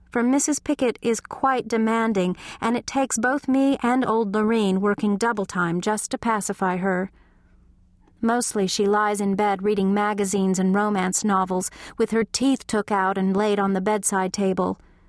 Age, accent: 40-59, American